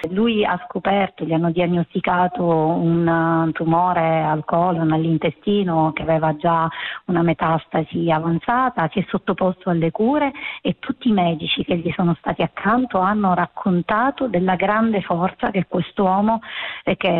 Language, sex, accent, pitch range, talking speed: Italian, female, native, 165-205 Hz, 140 wpm